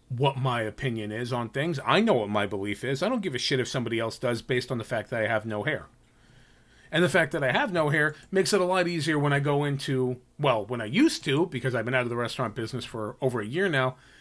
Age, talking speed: 40-59, 275 wpm